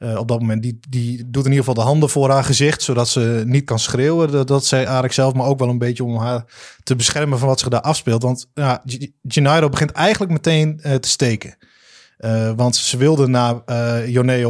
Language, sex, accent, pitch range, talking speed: Dutch, male, Dutch, 120-150 Hz, 230 wpm